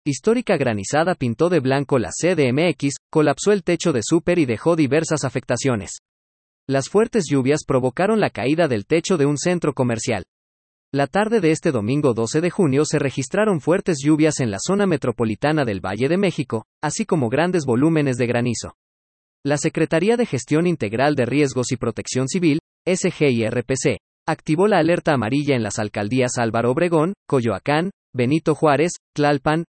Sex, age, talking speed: male, 40-59, 155 wpm